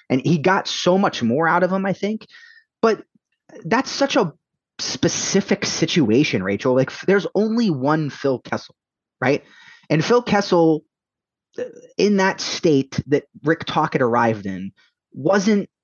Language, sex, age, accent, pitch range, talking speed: English, male, 20-39, American, 125-175 Hz, 140 wpm